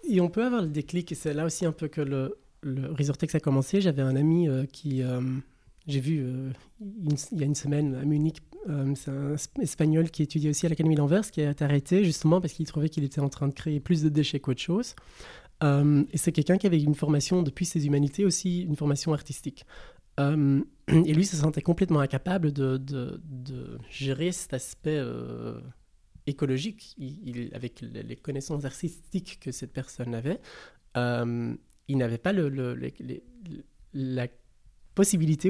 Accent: French